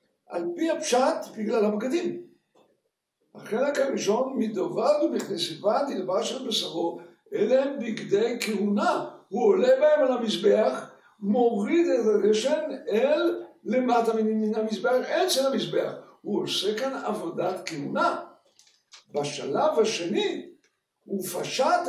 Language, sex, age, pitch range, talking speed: Hebrew, male, 60-79, 215-315 Hz, 110 wpm